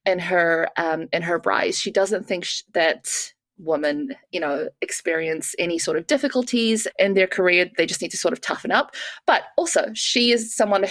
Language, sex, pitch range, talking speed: English, female, 190-255 Hz, 195 wpm